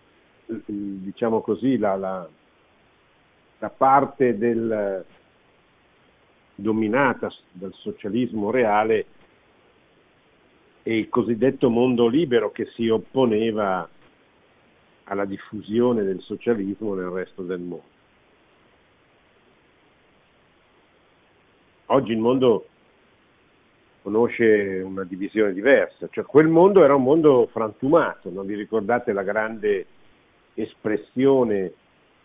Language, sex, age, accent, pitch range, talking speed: Italian, male, 50-69, native, 95-120 Hz, 85 wpm